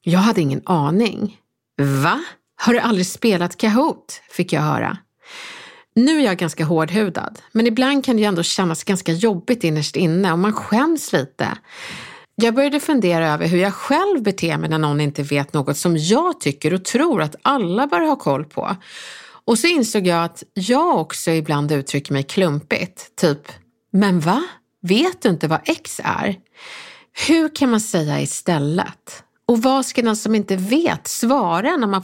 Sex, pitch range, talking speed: female, 170-240 Hz, 170 wpm